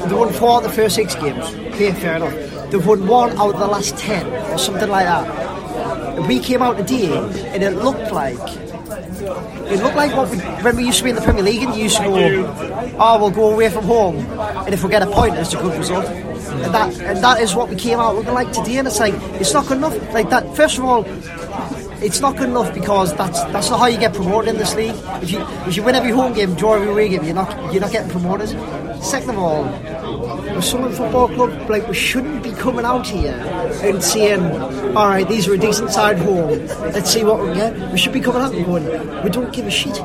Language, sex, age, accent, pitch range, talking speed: English, male, 20-39, British, 190-235 Hz, 245 wpm